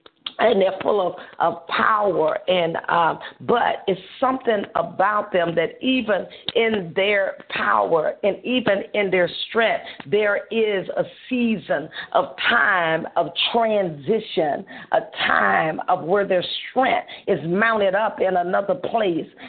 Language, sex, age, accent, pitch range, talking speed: English, female, 50-69, American, 185-240 Hz, 130 wpm